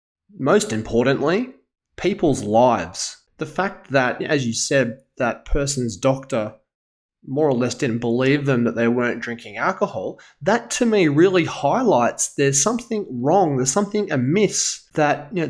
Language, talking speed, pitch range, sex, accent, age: English, 140 wpm, 125-160 Hz, male, Australian, 20-39